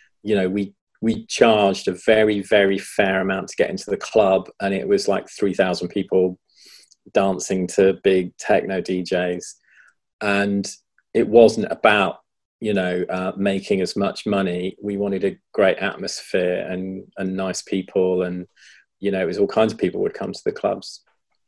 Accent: British